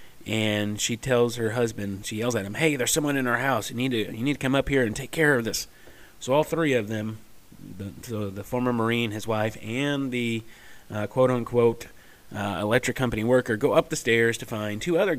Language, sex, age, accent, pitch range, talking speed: English, male, 30-49, American, 105-130 Hz, 225 wpm